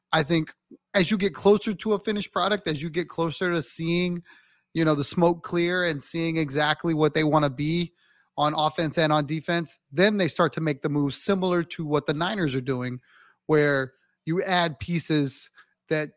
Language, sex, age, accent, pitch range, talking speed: English, male, 30-49, American, 150-180 Hz, 195 wpm